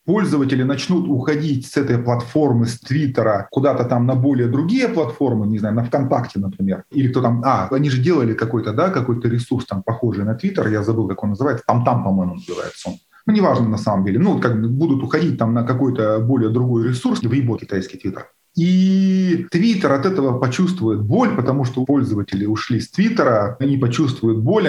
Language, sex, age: Russian, male, 30-49